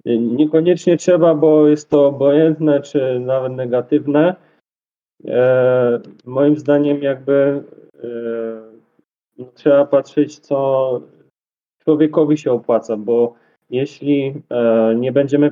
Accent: native